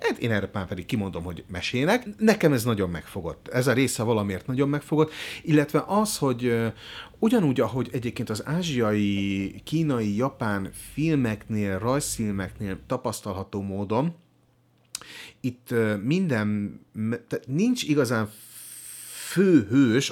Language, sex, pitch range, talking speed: Hungarian, male, 100-135 Hz, 105 wpm